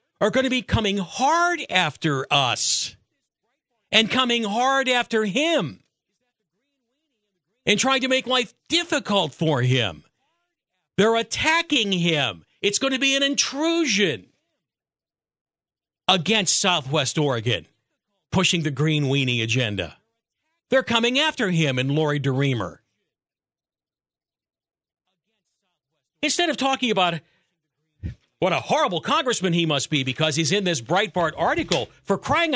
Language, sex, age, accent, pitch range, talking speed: English, male, 50-69, American, 155-250 Hz, 120 wpm